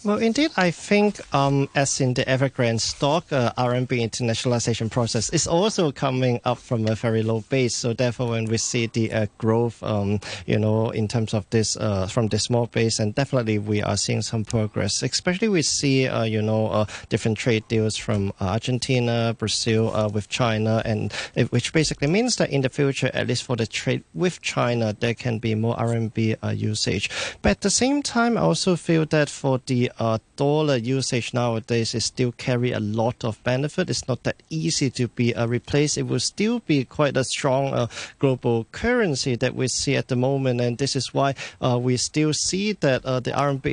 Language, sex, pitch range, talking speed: English, male, 115-135 Hz, 200 wpm